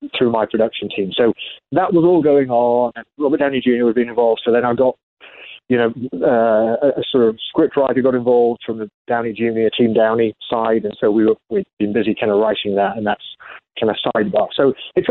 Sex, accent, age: male, British, 30-49